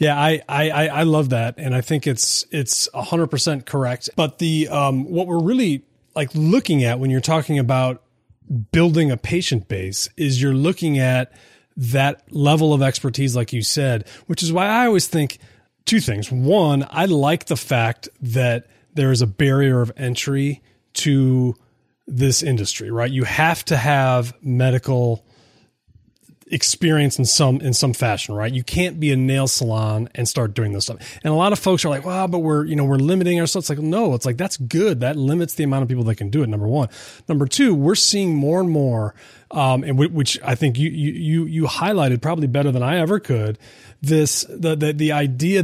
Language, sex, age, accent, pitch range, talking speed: English, male, 30-49, American, 125-160 Hz, 200 wpm